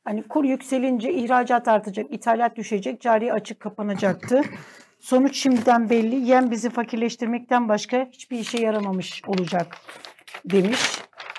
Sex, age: female, 60-79